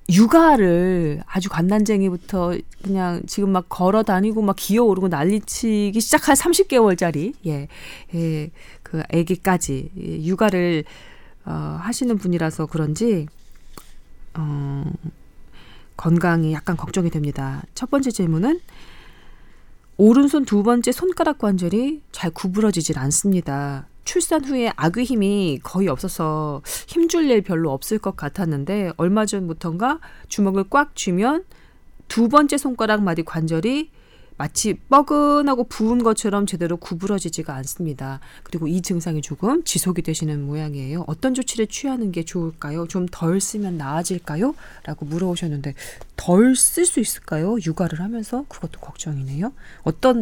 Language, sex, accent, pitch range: Korean, female, native, 160-225 Hz